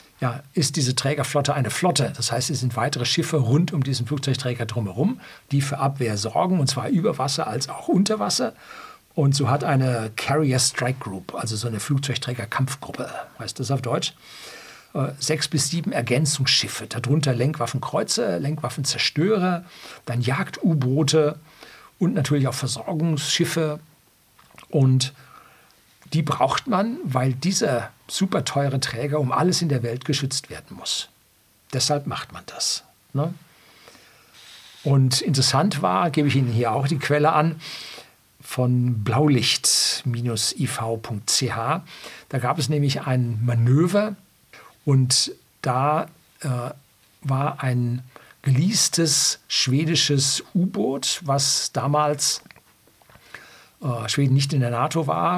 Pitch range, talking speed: 125-155 Hz, 125 wpm